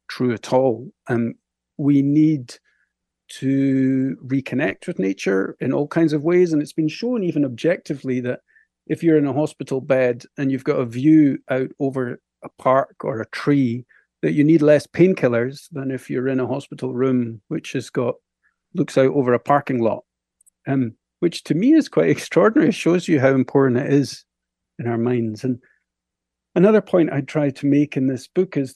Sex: male